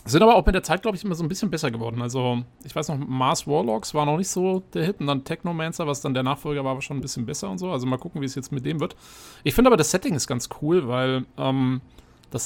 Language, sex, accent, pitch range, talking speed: German, male, German, 130-155 Hz, 295 wpm